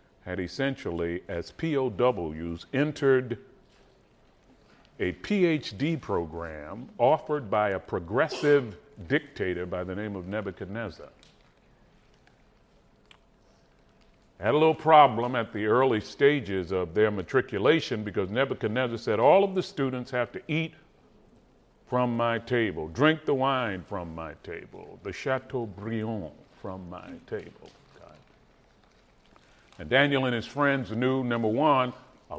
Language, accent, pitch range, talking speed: English, American, 100-145 Hz, 115 wpm